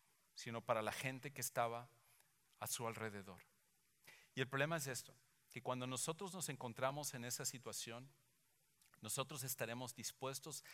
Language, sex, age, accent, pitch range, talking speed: English, male, 50-69, Mexican, 120-155 Hz, 140 wpm